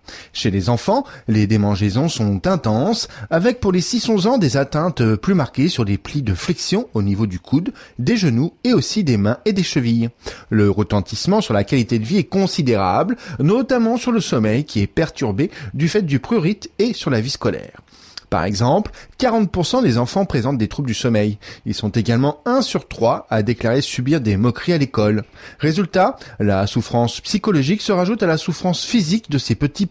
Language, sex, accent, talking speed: French, male, French, 190 wpm